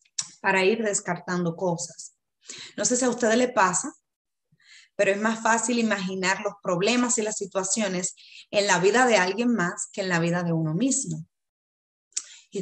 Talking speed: 165 wpm